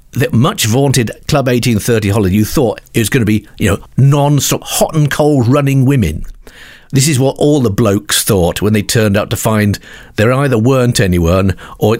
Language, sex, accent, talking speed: English, male, British, 180 wpm